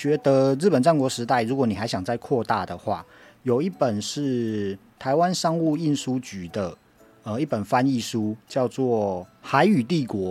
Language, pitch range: Chinese, 105-150 Hz